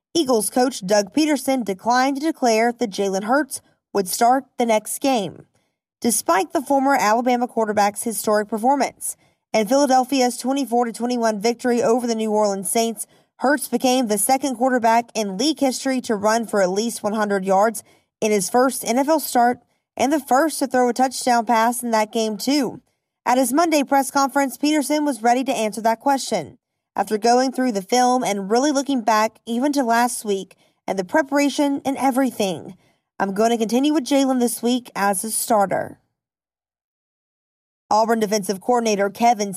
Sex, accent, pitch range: female, American, 210-260 Hz